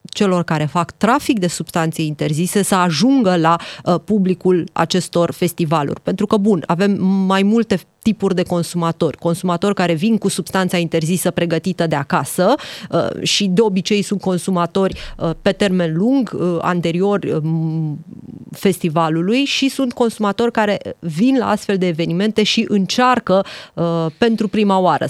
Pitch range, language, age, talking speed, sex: 170-205 Hz, Romanian, 30-49, 145 wpm, female